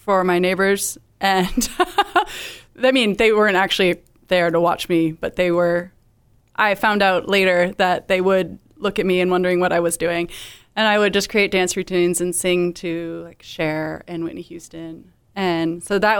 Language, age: English, 20-39